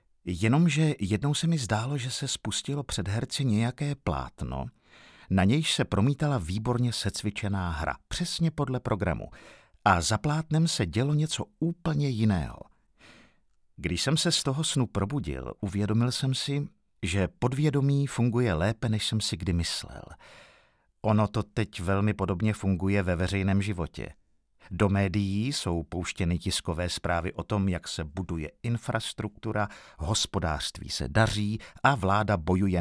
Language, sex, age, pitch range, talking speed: Czech, male, 50-69, 90-135 Hz, 140 wpm